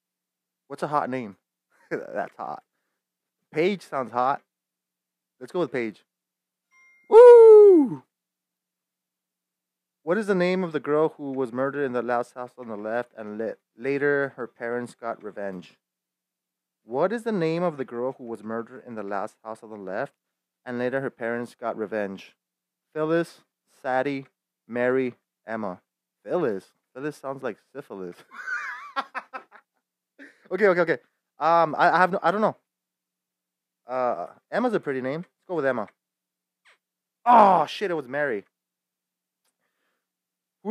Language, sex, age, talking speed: English, male, 20-39, 140 wpm